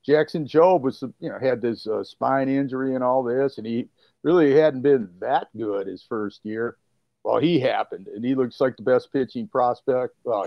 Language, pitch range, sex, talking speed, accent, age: English, 115-145 Hz, male, 200 wpm, American, 50-69